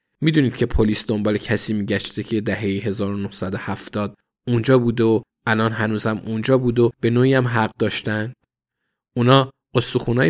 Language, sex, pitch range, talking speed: Persian, male, 105-130 Hz, 140 wpm